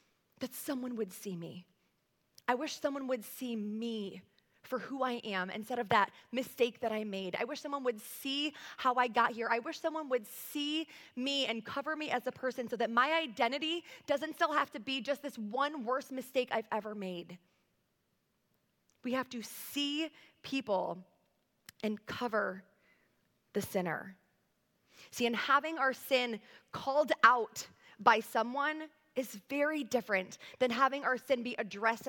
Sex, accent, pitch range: female, American, 220-285 Hz